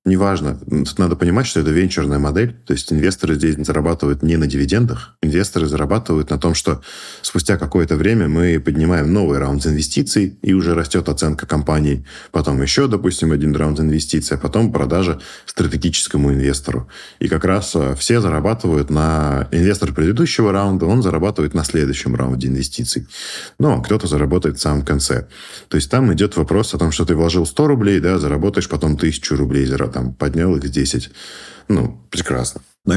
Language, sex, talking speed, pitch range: Russian, male, 160 wpm, 75-90 Hz